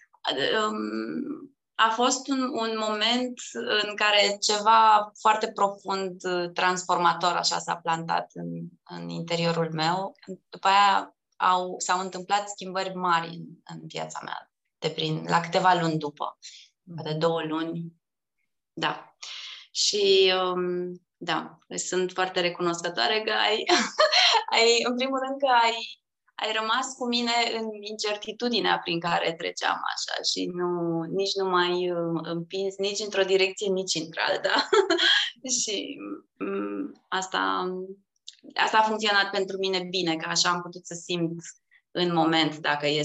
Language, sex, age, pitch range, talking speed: Romanian, female, 20-39, 170-230 Hz, 130 wpm